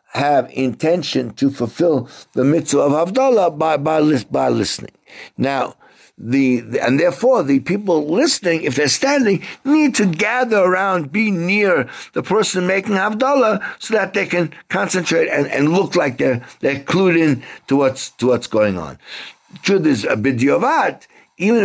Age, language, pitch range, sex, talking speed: 60-79, English, 140-225 Hz, male, 160 wpm